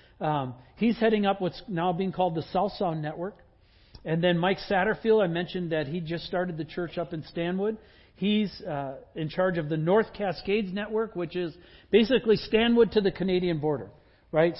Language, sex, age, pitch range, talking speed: English, male, 50-69, 160-200 Hz, 185 wpm